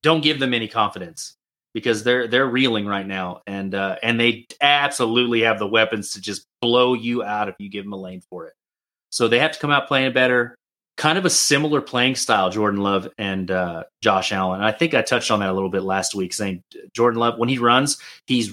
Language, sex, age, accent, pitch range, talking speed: English, male, 30-49, American, 100-120 Hz, 225 wpm